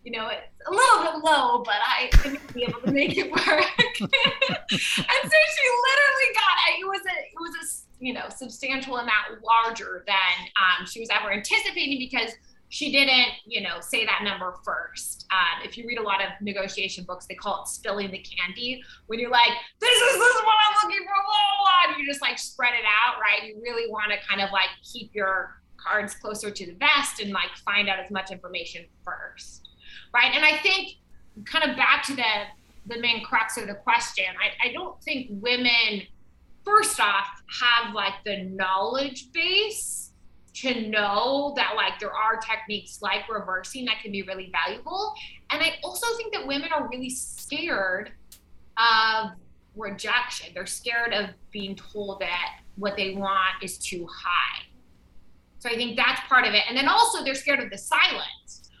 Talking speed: 190 wpm